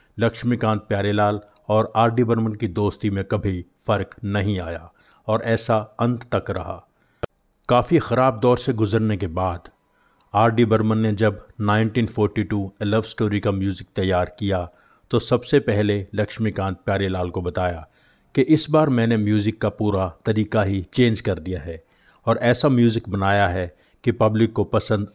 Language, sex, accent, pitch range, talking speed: Hindi, male, native, 100-115 Hz, 155 wpm